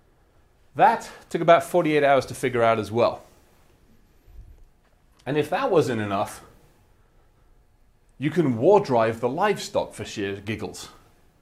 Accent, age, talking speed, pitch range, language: British, 30-49, 125 wpm, 110-140 Hz, English